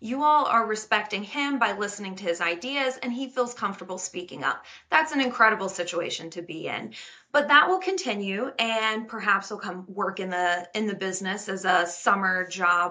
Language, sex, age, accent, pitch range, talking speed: English, female, 20-39, American, 195-245 Hz, 185 wpm